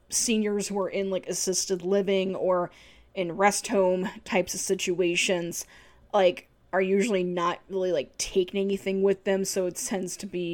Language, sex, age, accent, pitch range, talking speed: English, female, 10-29, American, 185-210 Hz, 165 wpm